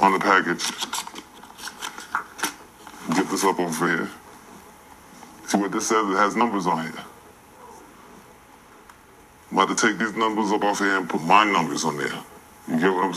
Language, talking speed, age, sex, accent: English, 165 wpm, 20-39, female, American